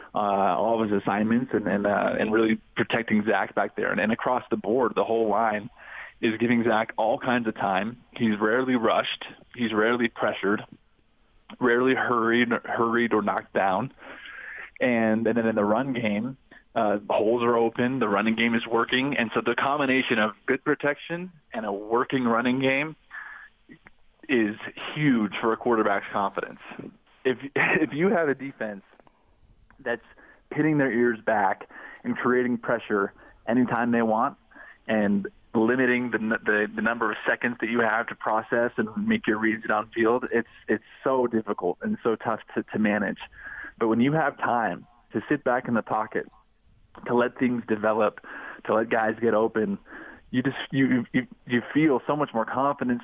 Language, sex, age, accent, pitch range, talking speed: English, male, 20-39, American, 110-125 Hz, 170 wpm